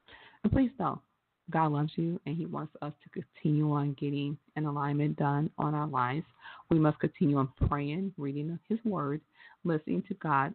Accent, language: American, English